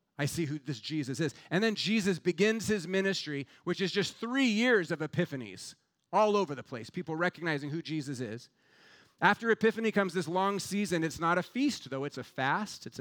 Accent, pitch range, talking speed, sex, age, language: American, 145-195 Hz, 200 wpm, male, 30-49, English